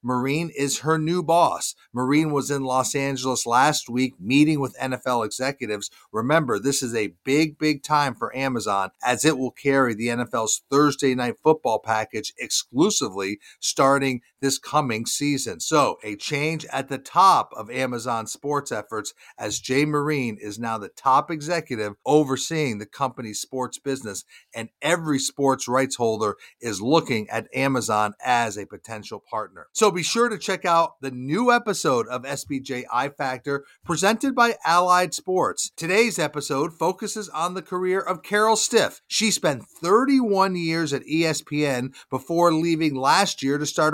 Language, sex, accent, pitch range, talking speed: English, male, American, 125-165 Hz, 155 wpm